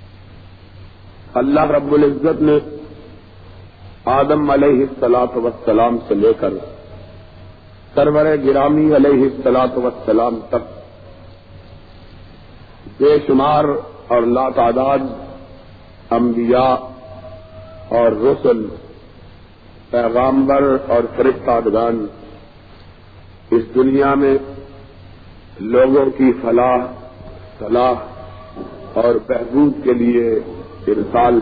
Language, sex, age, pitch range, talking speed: Urdu, male, 50-69, 95-130 Hz, 80 wpm